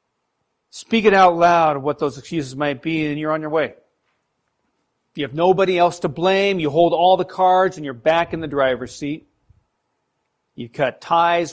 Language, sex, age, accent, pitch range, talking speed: English, male, 40-59, American, 140-180 Hz, 180 wpm